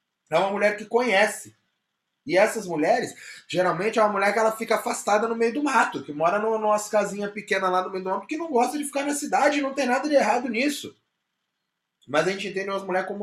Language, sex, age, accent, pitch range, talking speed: Portuguese, male, 20-39, Brazilian, 170-240 Hz, 225 wpm